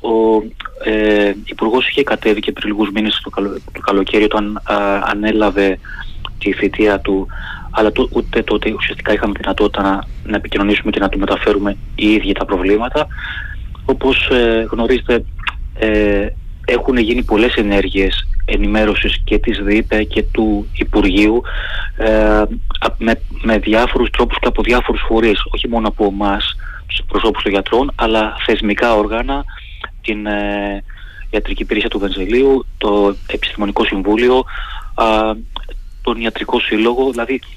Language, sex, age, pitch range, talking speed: Greek, male, 20-39, 100-115 Hz, 135 wpm